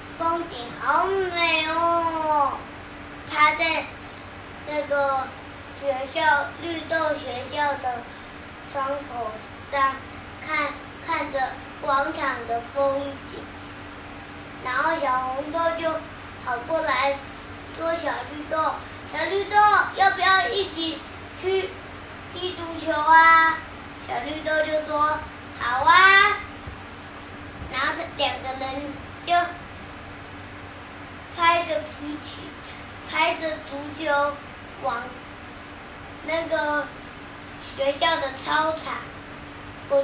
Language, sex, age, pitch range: Chinese, male, 20-39, 275-335 Hz